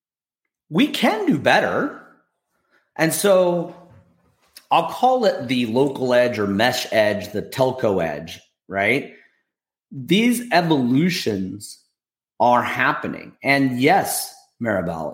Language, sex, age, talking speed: English, male, 40-59, 105 wpm